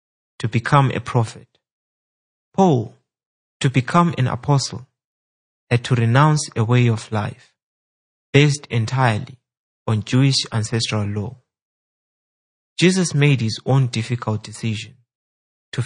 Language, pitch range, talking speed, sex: English, 110-135 Hz, 110 wpm, male